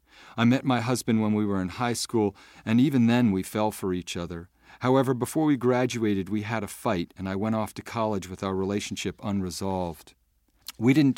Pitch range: 95-115 Hz